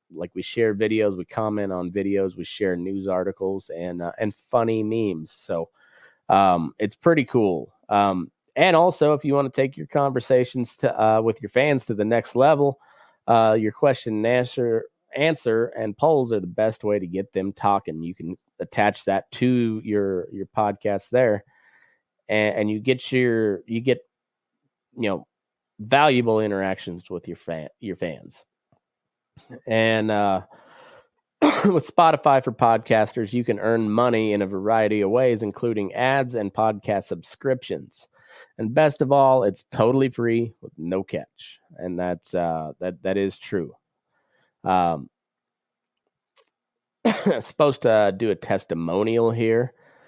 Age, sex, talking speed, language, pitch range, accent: 30-49, male, 150 wpm, English, 100-125 Hz, American